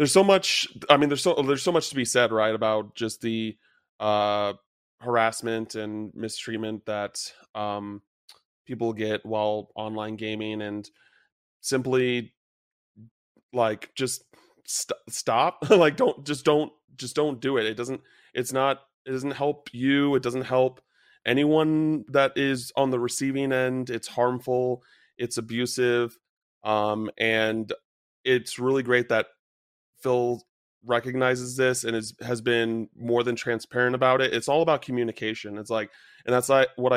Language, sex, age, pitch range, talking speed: English, male, 30-49, 110-130 Hz, 145 wpm